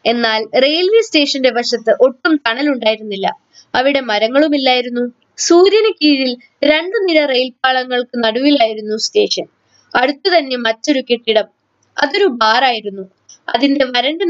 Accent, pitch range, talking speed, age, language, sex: native, 225-290 Hz, 95 wpm, 20-39, Malayalam, female